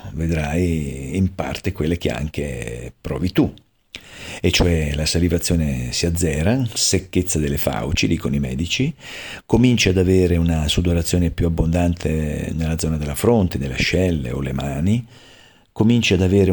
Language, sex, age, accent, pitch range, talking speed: Italian, male, 50-69, native, 85-100 Hz, 140 wpm